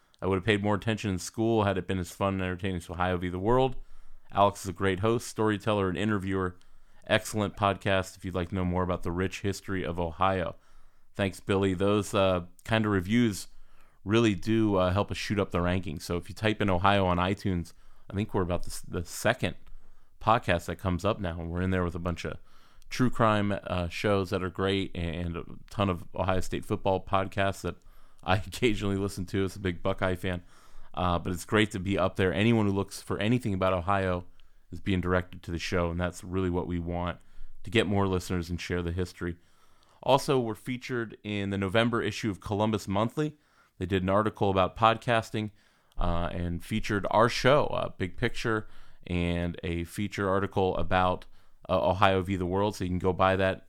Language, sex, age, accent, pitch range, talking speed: English, male, 30-49, American, 90-105 Hz, 205 wpm